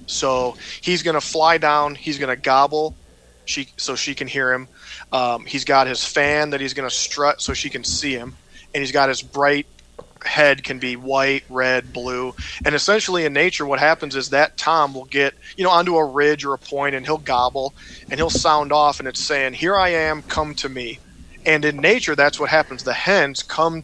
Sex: male